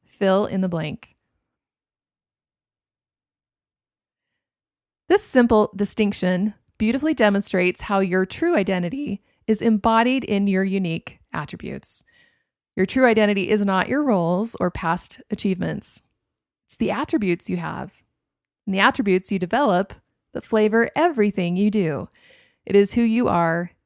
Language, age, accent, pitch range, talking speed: English, 30-49, American, 185-235 Hz, 125 wpm